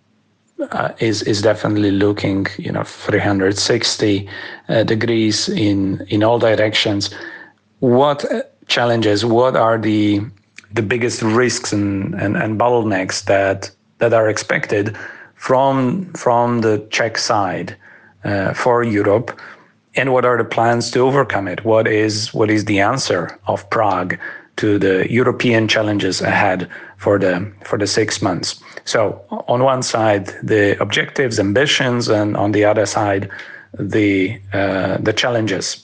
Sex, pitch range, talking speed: male, 100-120 Hz, 135 wpm